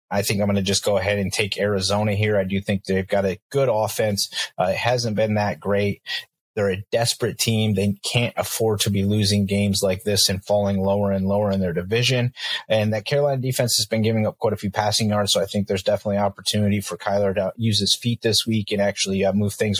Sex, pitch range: male, 100-110 Hz